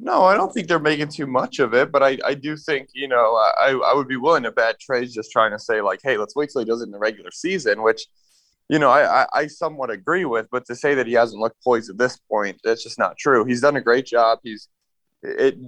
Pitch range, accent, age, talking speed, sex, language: 105-140 Hz, American, 20-39, 270 wpm, male, English